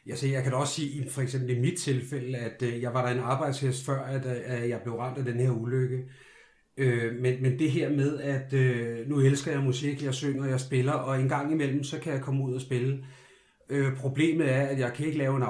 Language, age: Danish, 30-49